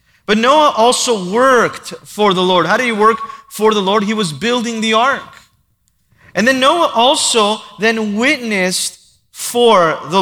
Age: 30-49